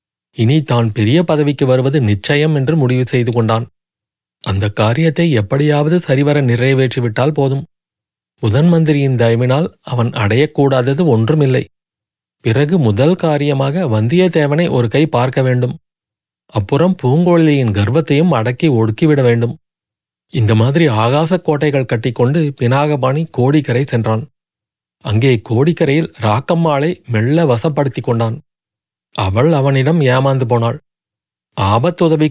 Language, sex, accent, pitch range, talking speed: Tamil, male, native, 120-155 Hz, 100 wpm